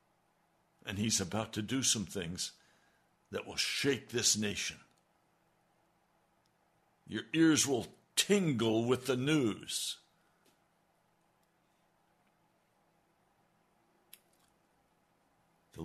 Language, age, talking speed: English, 60-79, 75 wpm